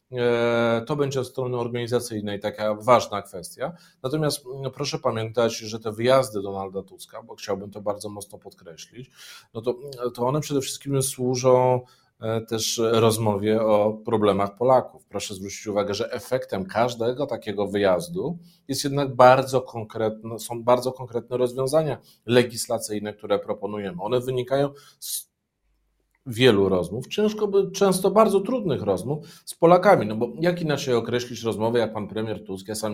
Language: Polish